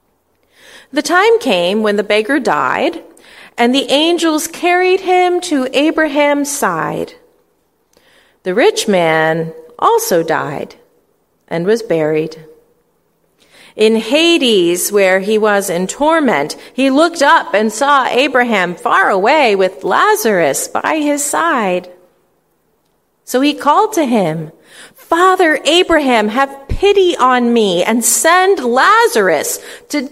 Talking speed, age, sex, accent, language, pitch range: 115 wpm, 40-59, female, American, English, 215-340 Hz